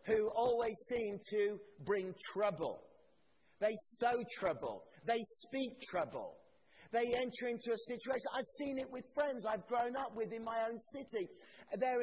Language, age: English, 40-59